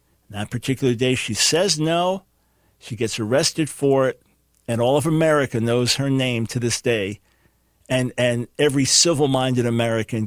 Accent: American